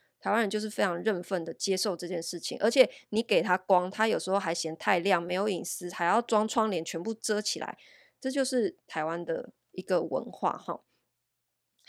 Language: Chinese